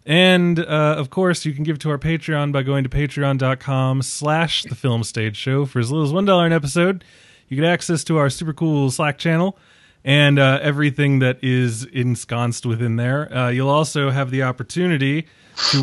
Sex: male